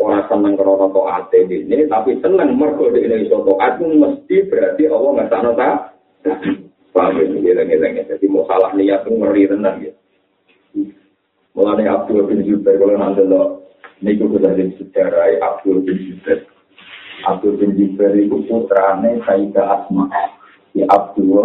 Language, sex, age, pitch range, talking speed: Indonesian, male, 50-69, 100-130 Hz, 100 wpm